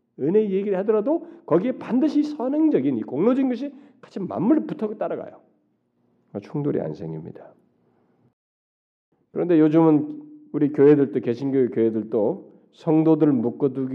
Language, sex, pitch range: Korean, male, 125-190 Hz